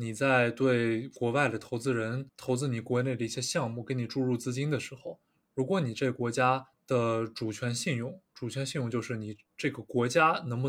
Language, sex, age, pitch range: Chinese, male, 20-39, 115-135 Hz